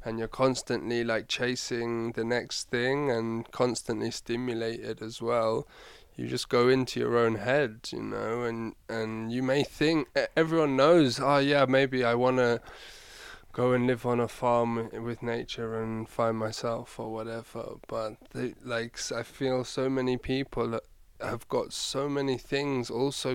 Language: English